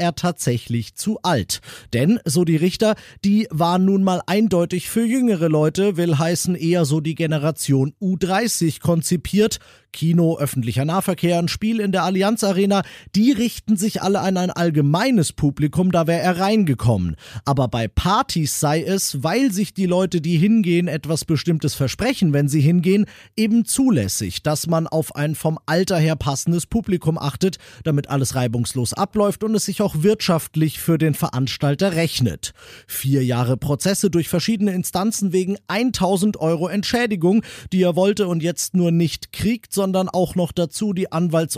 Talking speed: 160 wpm